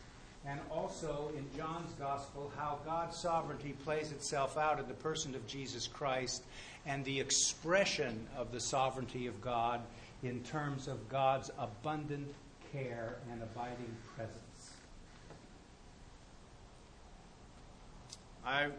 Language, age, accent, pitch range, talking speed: English, 60-79, American, 130-165 Hz, 110 wpm